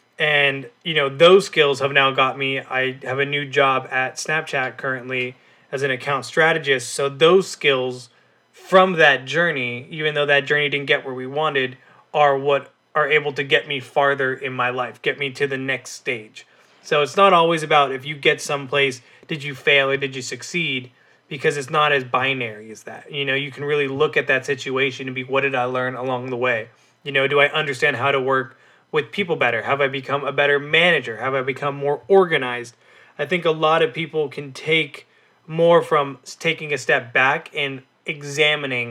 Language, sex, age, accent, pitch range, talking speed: English, male, 20-39, American, 130-150 Hz, 205 wpm